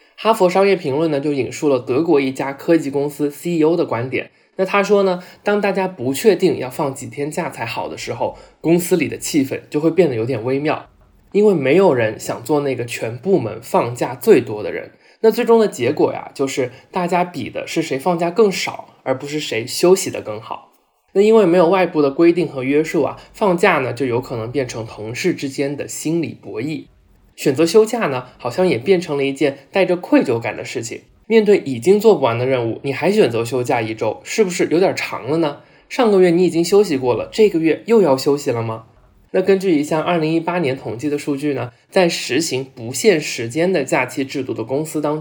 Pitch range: 130-185 Hz